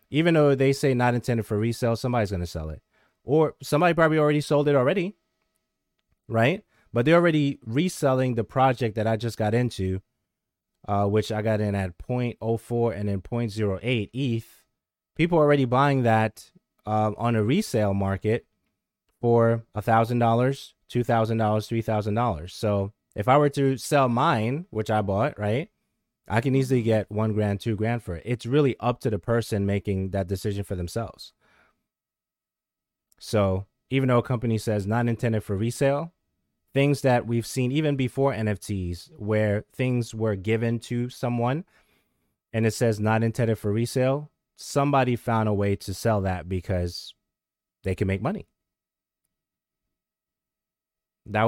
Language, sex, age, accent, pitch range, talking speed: English, male, 20-39, American, 105-130 Hz, 160 wpm